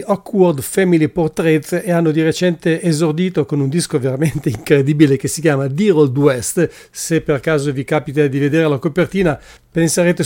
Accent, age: Italian, 40-59